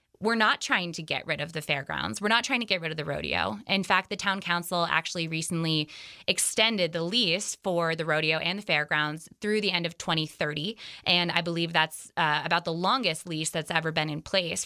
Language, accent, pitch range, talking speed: English, American, 160-195 Hz, 215 wpm